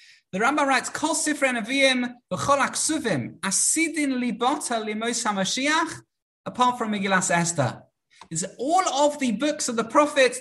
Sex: male